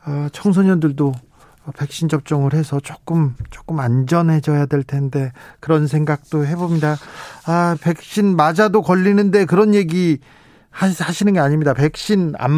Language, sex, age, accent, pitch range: Korean, male, 40-59, native, 140-195 Hz